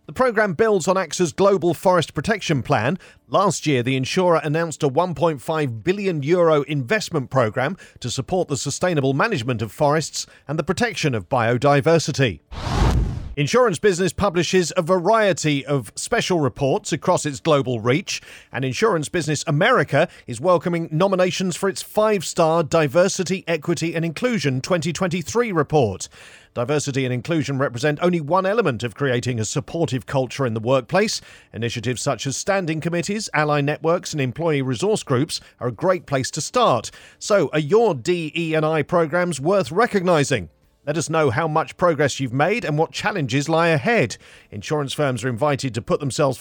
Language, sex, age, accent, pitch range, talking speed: English, male, 40-59, British, 135-180 Hz, 155 wpm